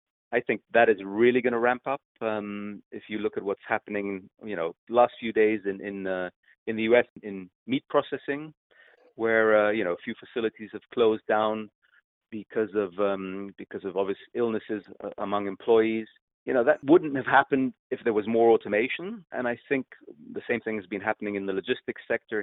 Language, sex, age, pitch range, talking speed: English, male, 30-49, 100-120 Hz, 195 wpm